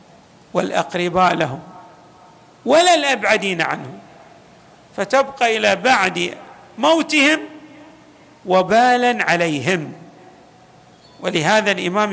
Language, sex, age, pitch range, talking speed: Arabic, male, 50-69, 185-270 Hz, 65 wpm